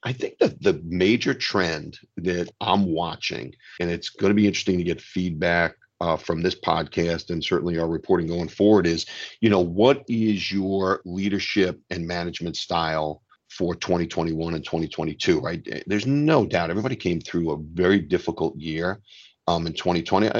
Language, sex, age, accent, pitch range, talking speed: English, male, 50-69, American, 85-105 Hz, 165 wpm